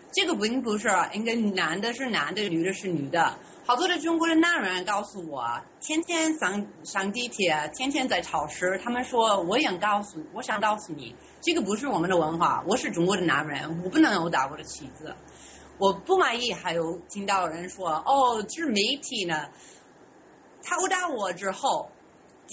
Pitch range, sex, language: 175-275 Hz, female, English